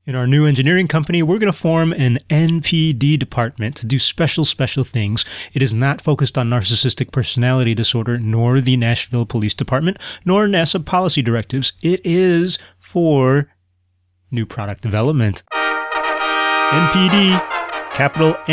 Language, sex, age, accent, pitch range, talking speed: English, male, 30-49, American, 115-145 Hz, 135 wpm